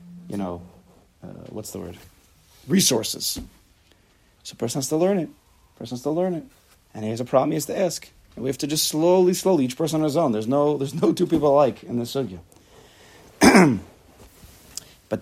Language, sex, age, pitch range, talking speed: English, male, 40-59, 125-175 Hz, 205 wpm